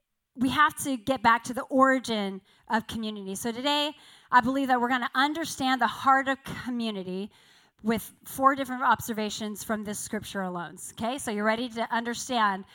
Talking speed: 175 wpm